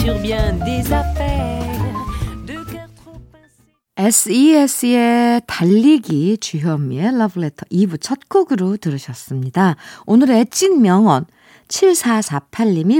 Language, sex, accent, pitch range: Korean, female, native, 170-270 Hz